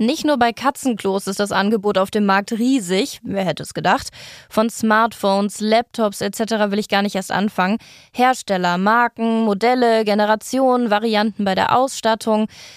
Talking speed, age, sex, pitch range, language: 155 wpm, 20-39, female, 205-245 Hz, German